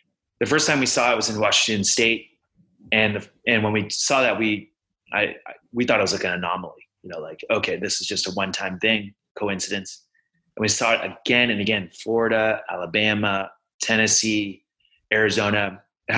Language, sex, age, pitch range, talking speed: English, male, 30-49, 100-120 Hz, 180 wpm